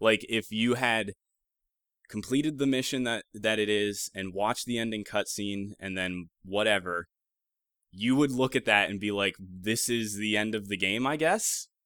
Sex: male